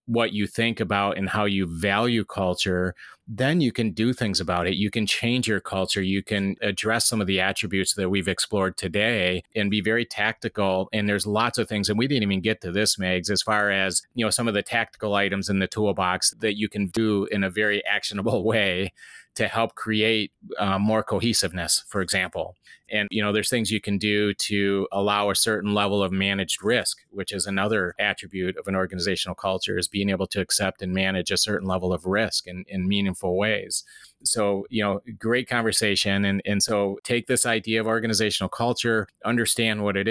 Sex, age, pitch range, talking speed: male, 30-49, 95-110 Hz, 205 wpm